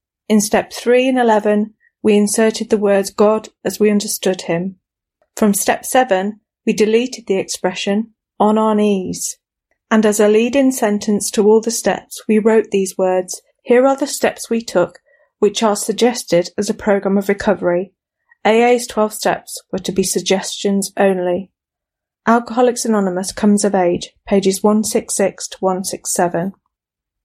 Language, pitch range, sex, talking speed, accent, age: English, 190-225 Hz, female, 150 wpm, British, 30-49